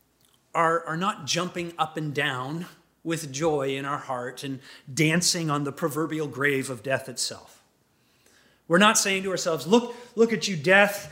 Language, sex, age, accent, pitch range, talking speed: English, male, 30-49, American, 165-235 Hz, 160 wpm